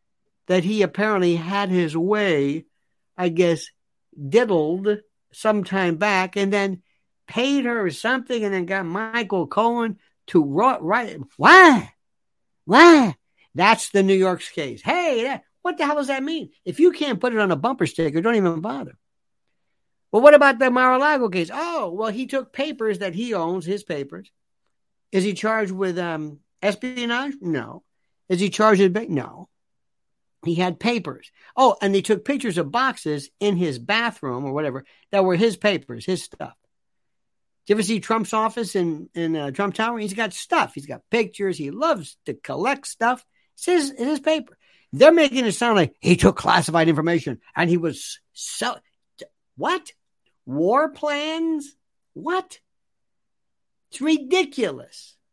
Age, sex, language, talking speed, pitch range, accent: 60-79, male, English, 160 wpm, 180-260 Hz, American